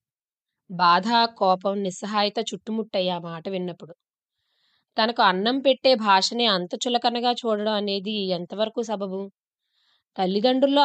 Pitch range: 190-230 Hz